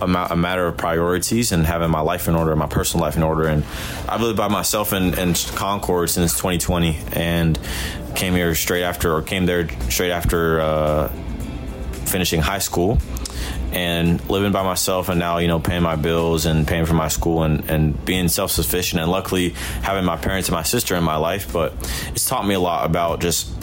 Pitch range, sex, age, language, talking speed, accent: 80-90 Hz, male, 20-39, English, 200 wpm, American